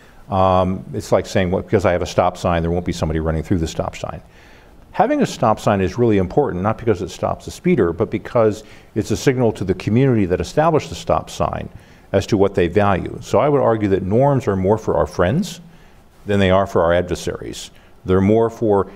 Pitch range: 85-110 Hz